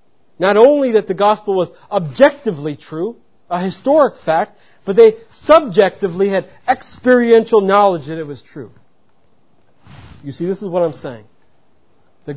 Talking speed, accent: 140 wpm, American